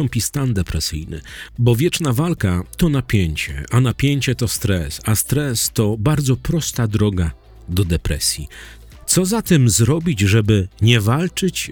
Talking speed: 140 wpm